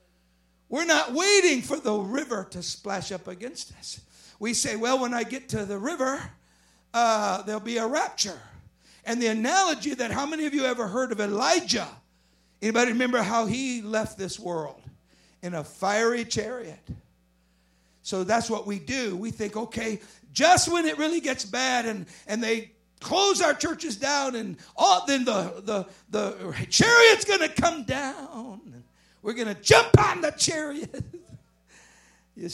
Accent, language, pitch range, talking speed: American, English, 170-245 Hz, 160 wpm